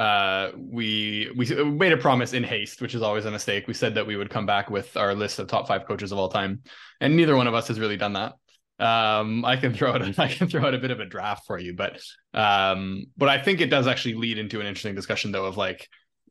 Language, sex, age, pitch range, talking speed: English, male, 20-39, 100-130 Hz, 260 wpm